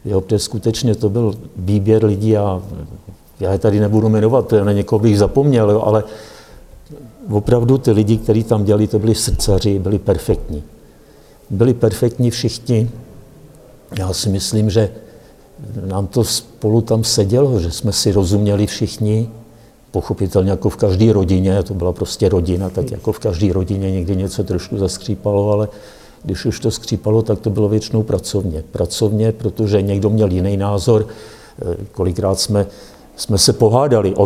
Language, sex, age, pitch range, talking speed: Czech, male, 60-79, 100-115 Hz, 145 wpm